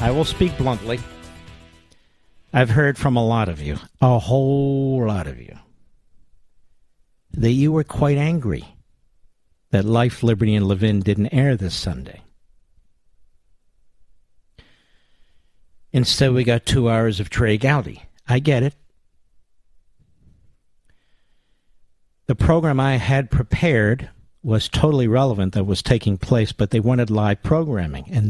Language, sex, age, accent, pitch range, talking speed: English, male, 50-69, American, 90-125 Hz, 125 wpm